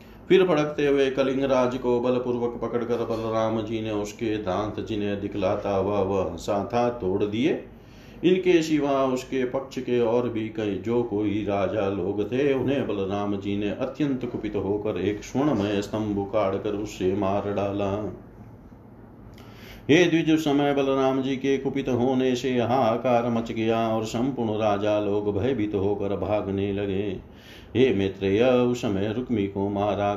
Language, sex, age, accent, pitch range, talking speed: Hindi, male, 40-59, native, 100-120 Hz, 140 wpm